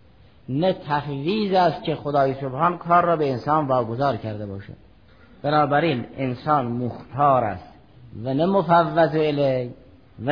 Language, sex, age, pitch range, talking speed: Persian, male, 50-69, 120-155 Hz, 130 wpm